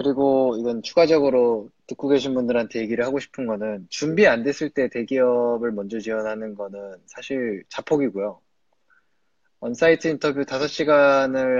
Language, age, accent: Korean, 20-39, native